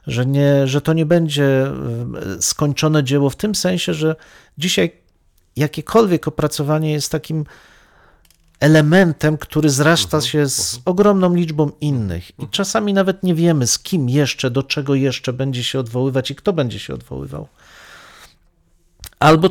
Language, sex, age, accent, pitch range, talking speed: Polish, male, 40-59, native, 125-160 Hz, 135 wpm